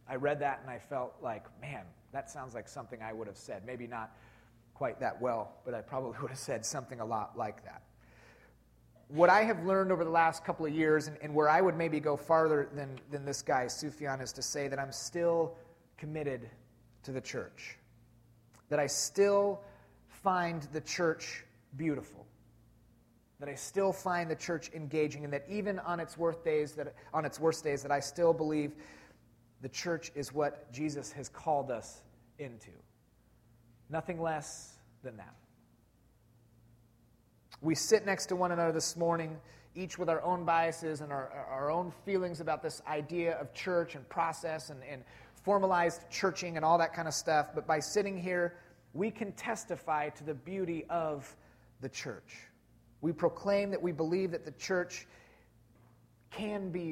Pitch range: 120-170 Hz